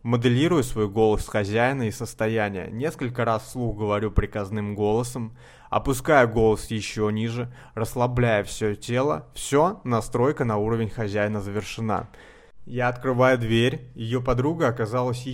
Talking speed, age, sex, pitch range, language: 125 wpm, 20-39, male, 110-130 Hz, Russian